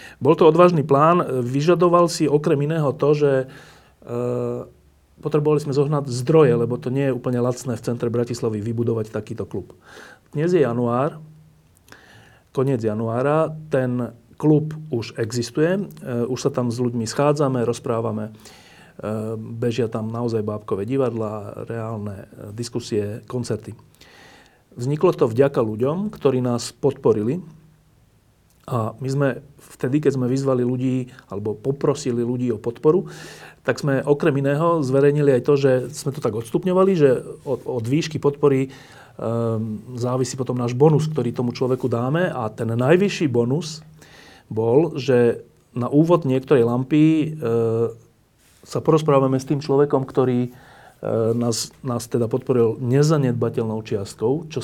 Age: 40-59